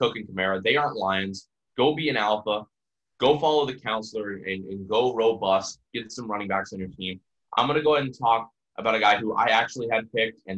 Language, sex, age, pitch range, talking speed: English, male, 20-39, 95-115 Hz, 235 wpm